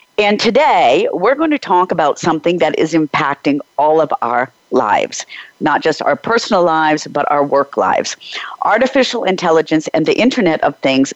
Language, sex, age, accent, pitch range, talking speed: English, female, 50-69, American, 155-215 Hz, 165 wpm